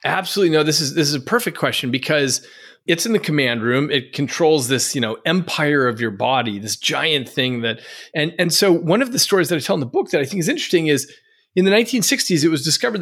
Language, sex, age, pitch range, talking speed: English, male, 40-59, 130-180 Hz, 245 wpm